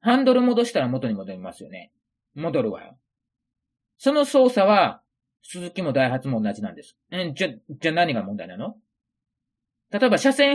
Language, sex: Japanese, male